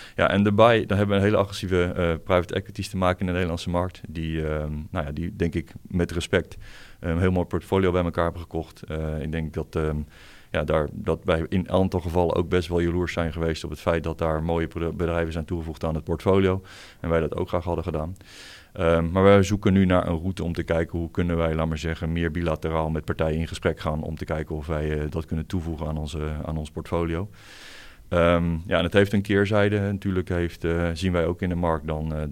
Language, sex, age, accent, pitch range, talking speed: Dutch, male, 30-49, Dutch, 80-90 Hz, 245 wpm